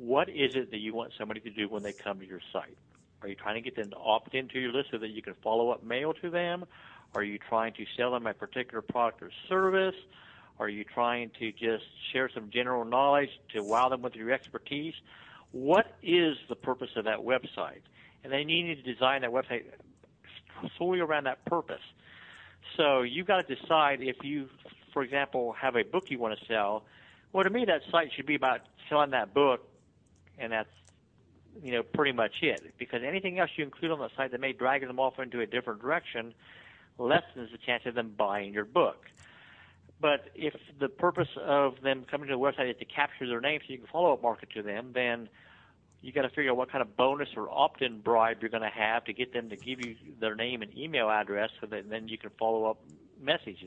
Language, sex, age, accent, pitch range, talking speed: English, male, 60-79, American, 110-140 Hz, 220 wpm